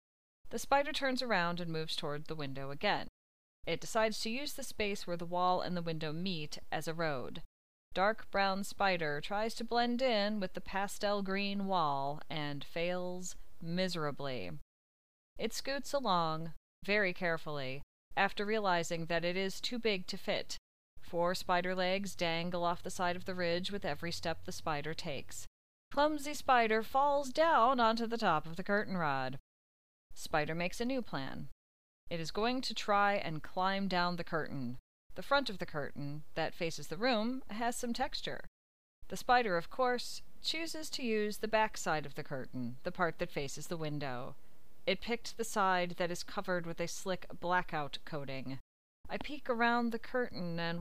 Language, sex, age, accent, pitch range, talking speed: English, female, 30-49, American, 155-215 Hz, 170 wpm